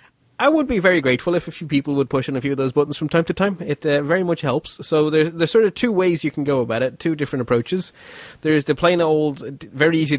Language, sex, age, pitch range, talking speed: English, male, 30-49, 125-160 Hz, 275 wpm